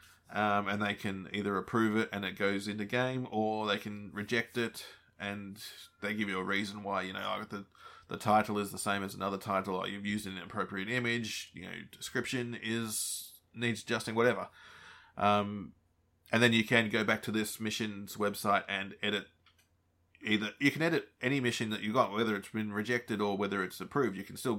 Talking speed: 200 wpm